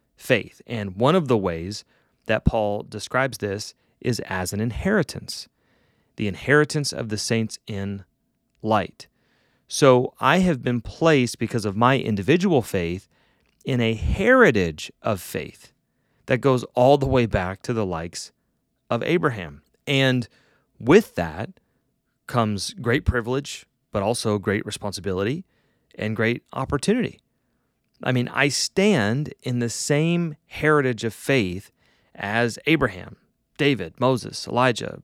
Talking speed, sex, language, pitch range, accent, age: 130 wpm, male, English, 105-140 Hz, American, 30-49